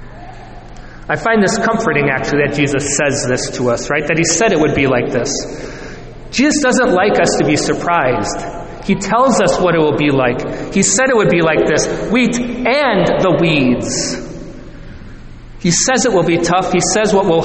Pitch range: 160-200 Hz